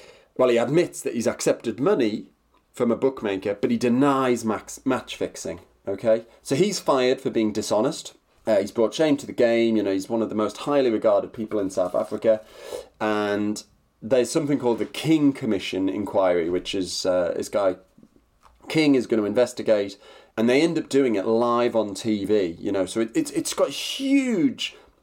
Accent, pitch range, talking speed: British, 105-140 Hz, 185 wpm